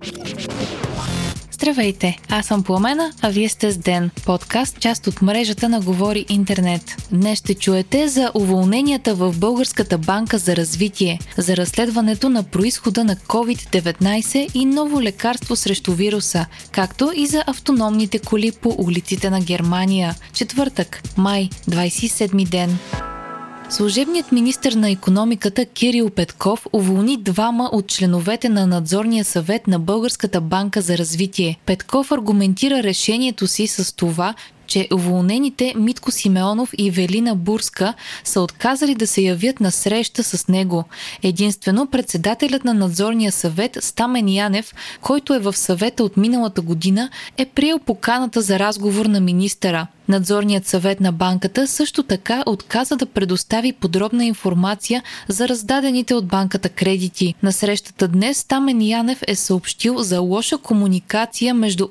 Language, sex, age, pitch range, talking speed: Bulgarian, female, 20-39, 190-235 Hz, 135 wpm